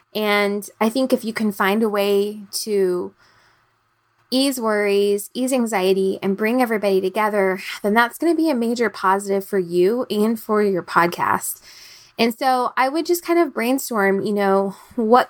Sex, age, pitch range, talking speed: female, 20-39, 195-245 Hz, 170 wpm